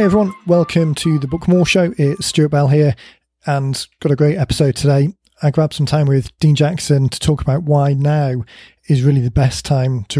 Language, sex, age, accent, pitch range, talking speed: English, male, 30-49, British, 135-150 Hz, 210 wpm